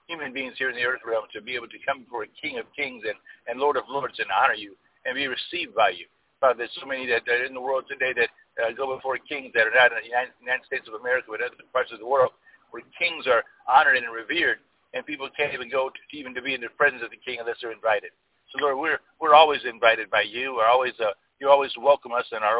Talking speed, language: 270 wpm, English